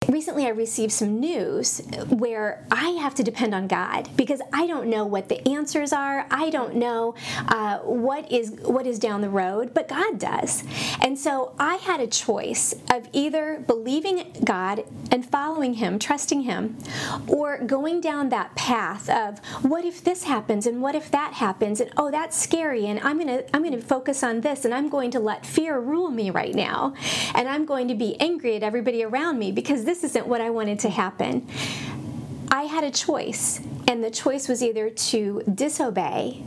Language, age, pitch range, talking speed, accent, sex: English, 40-59, 225-290 Hz, 190 wpm, American, female